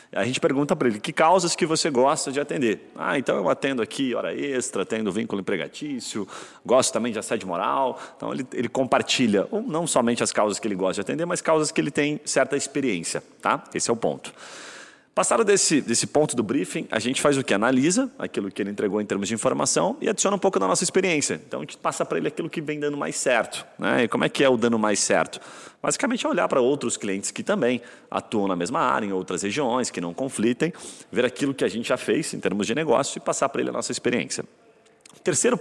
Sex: male